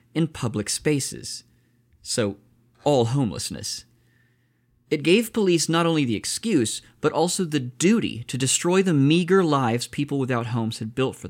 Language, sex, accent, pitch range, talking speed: English, male, American, 115-140 Hz, 150 wpm